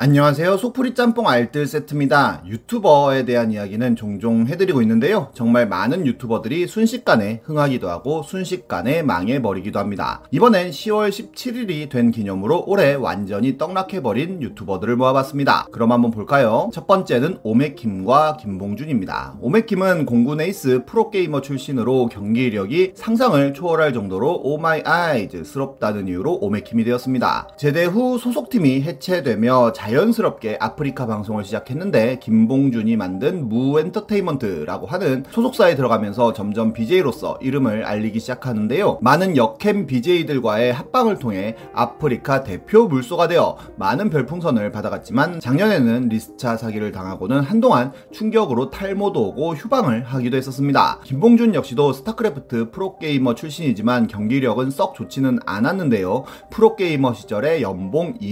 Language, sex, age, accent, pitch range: Korean, male, 30-49, native, 115-190 Hz